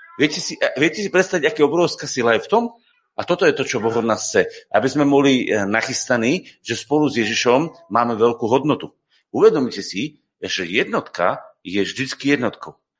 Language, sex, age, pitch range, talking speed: Slovak, male, 40-59, 115-170 Hz, 170 wpm